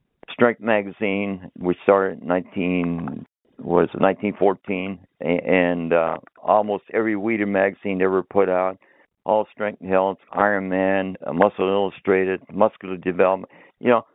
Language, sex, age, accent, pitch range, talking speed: English, male, 60-79, American, 90-105 Hz, 115 wpm